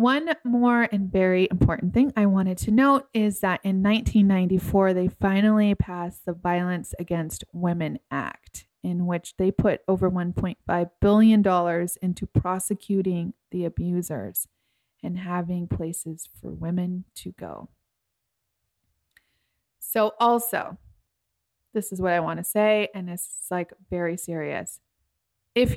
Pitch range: 175-210 Hz